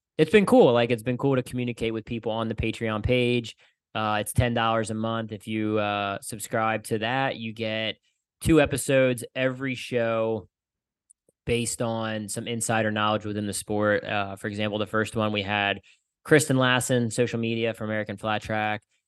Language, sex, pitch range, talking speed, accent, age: English, male, 110-125 Hz, 175 wpm, American, 20-39